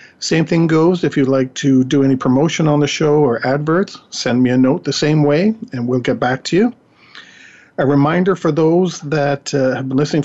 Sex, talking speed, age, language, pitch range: male, 215 wpm, 50-69, English, 135-170 Hz